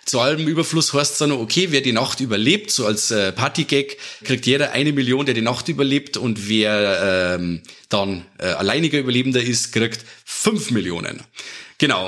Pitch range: 120-150 Hz